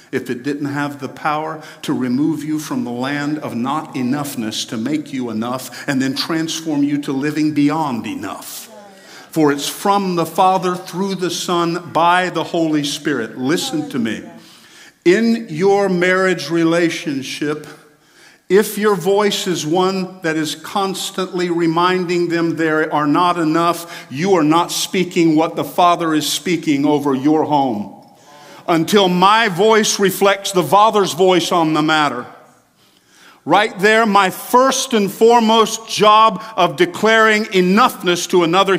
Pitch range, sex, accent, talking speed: 150-195 Hz, male, American, 145 wpm